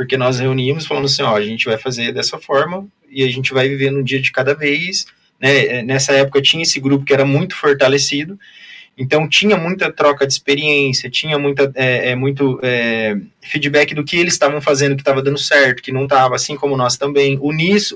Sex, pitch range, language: male, 130-150 Hz, Portuguese